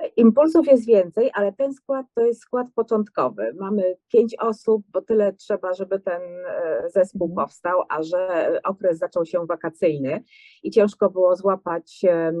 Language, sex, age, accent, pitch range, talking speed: English, female, 30-49, Polish, 165-215 Hz, 145 wpm